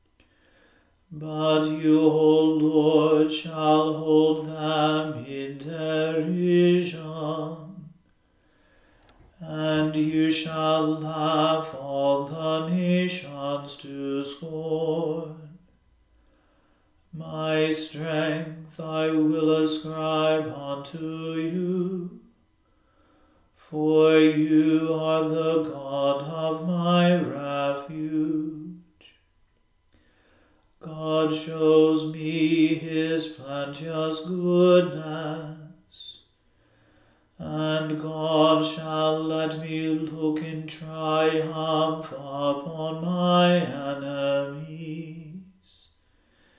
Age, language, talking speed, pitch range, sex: 40-59, English, 65 wpm, 155-160 Hz, male